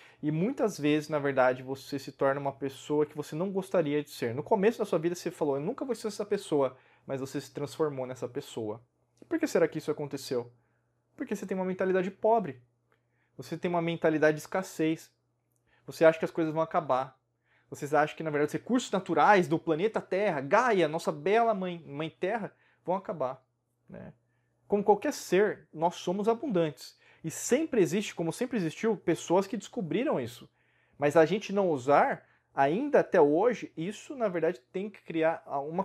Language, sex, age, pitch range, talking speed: Portuguese, male, 20-39, 145-200 Hz, 185 wpm